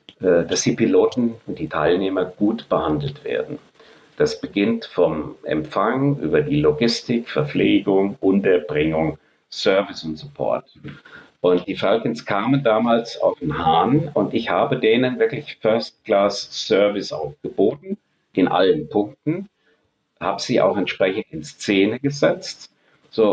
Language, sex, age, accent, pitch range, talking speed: German, male, 50-69, German, 105-140 Hz, 125 wpm